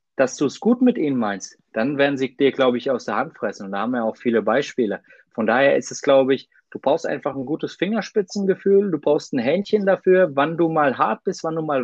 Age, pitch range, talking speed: 30-49, 160-220 Hz, 250 wpm